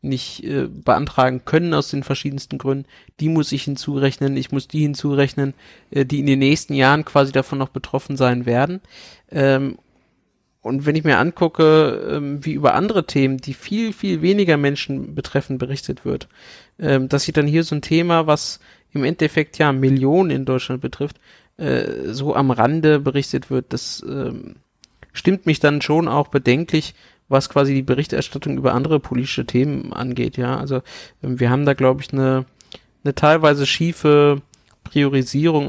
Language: German